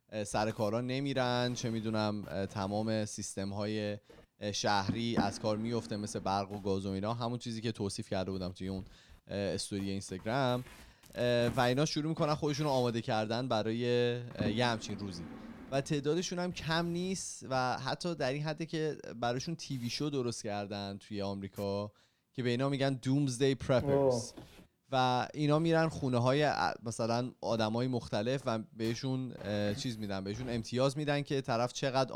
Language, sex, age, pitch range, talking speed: Persian, male, 20-39, 105-130 Hz, 155 wpm